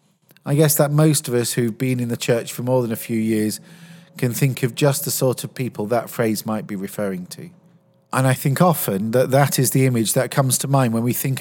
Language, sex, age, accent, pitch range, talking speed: English, male, 40-59, British, 130-165 Hz, 245 wpm